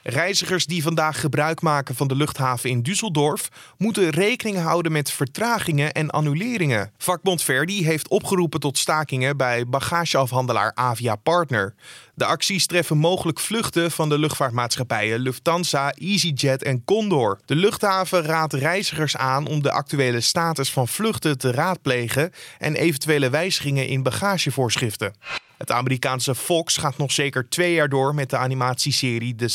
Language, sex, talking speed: Dutch, male, 140 wpm